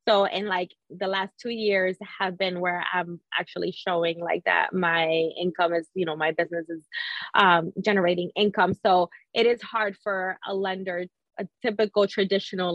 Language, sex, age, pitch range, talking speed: English, female, 20-39, 180-210 Hz, 170 wpm